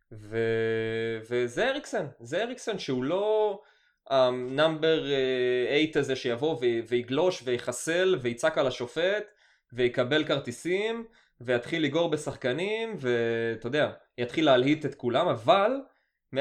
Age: 20-39